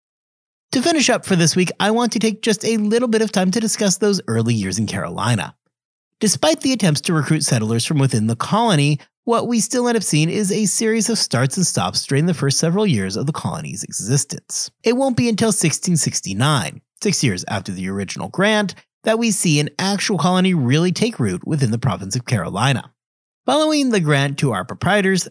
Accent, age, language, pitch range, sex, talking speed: American, 30-49, English, 140-215 Hz, male, 205 wpm